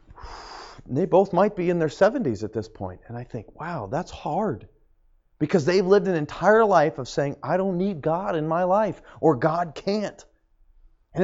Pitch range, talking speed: 125-180 Hz, 185 wpm